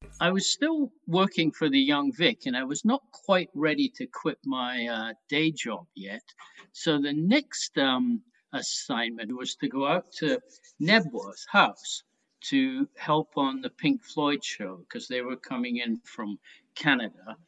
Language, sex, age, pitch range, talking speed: English, male, 60-79, 120-195 Hz, 160 wpm